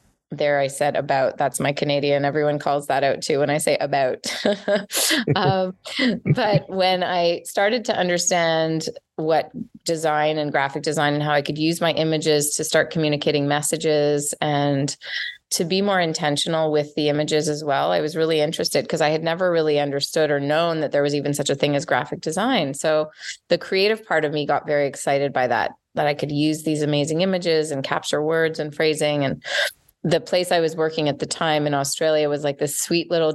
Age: 20-39